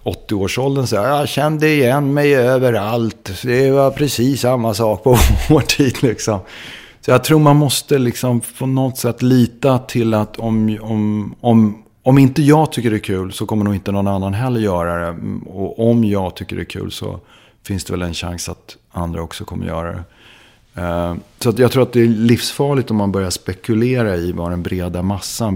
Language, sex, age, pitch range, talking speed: English, male, 30-49, 90-120 Hz, 190 wpm